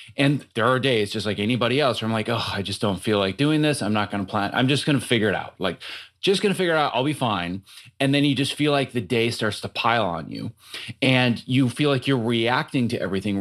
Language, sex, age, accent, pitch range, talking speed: English, male, 30-49, American, 105-140 Hz, 280 wpm